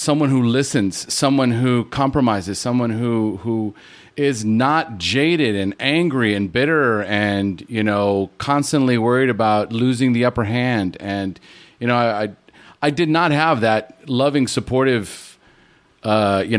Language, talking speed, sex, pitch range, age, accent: English, 145 wpm, male, 115-155 Hz, 40-59, American